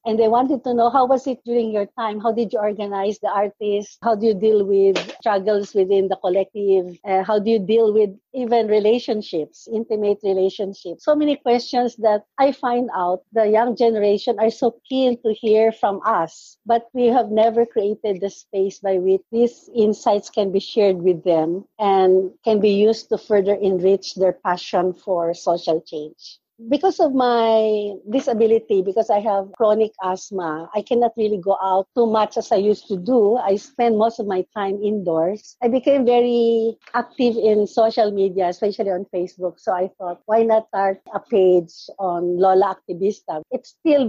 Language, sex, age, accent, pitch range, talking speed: English, female, 50-69, Filipino, 195-230 Hz, 180 wpm